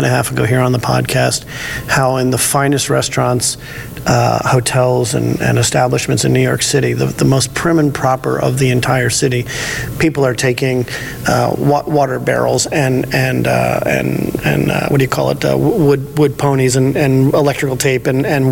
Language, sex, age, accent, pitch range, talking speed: English, male, 40-59, American, 130-150 Hz, 190 wpm